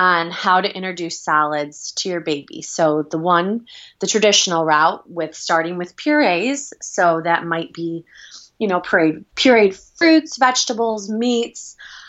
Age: 20-39